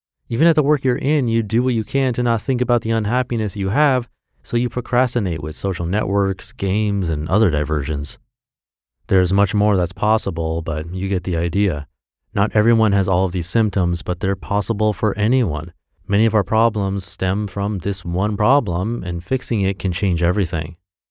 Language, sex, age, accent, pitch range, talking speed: English, male, 30-49, American, 90-120 Hz, 190 wpm